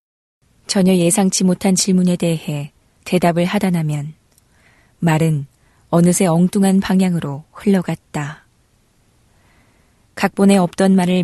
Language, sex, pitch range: Korean, female, 160-190 Hz